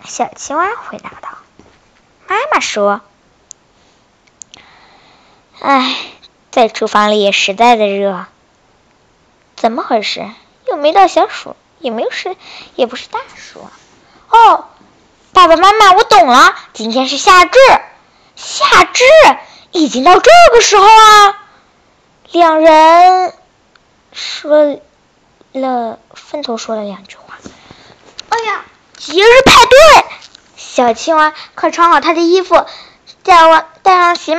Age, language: 10-29, Chinese